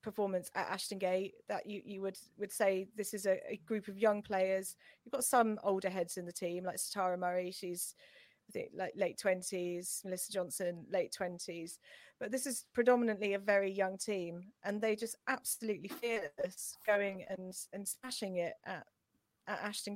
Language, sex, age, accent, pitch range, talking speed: English, female, 30-49, British, 185-225 Hz, 170 wpm